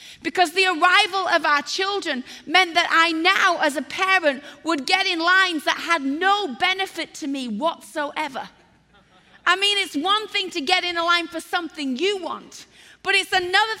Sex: female